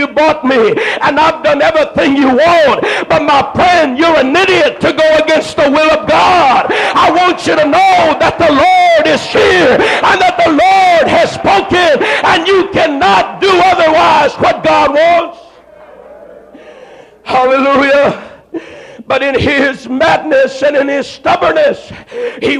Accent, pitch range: American, 280-345 Hz